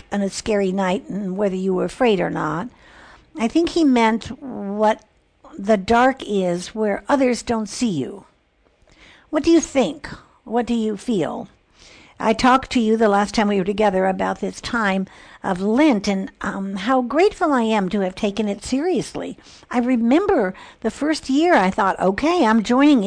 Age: 60-79